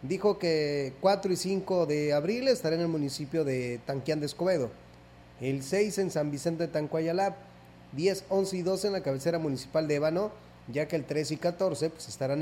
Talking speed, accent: 200 wpm, Mexican